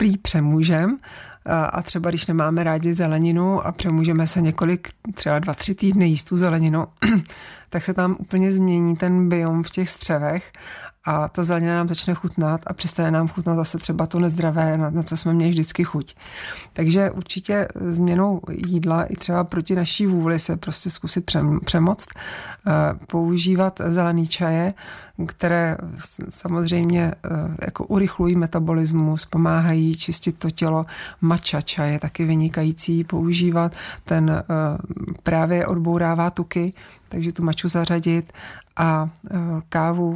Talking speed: 135 wpm